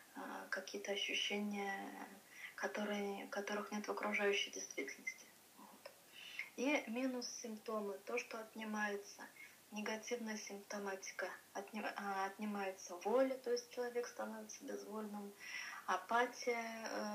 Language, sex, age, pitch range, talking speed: Amharic, female, 20-39, 200-240 Hz, 90 wpm